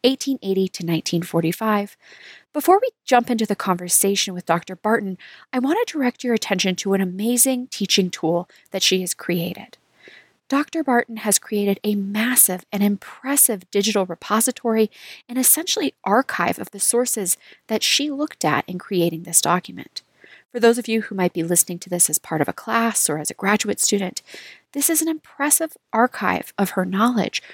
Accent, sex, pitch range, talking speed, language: American, female, 185-250 Hz, 170 wpm, English